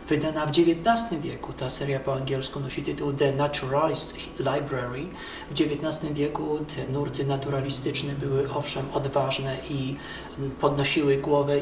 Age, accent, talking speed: 40-59, native, 130 wpm